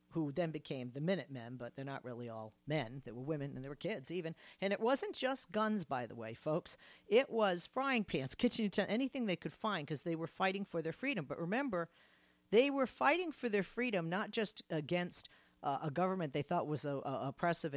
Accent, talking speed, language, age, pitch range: American, 220 wpm, English, 50-69, 135-200 Hz